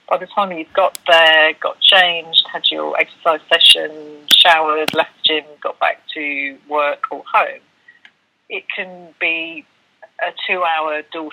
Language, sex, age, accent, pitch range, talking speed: English, female, 40-59, British, 150-190 Hz, 155 wpm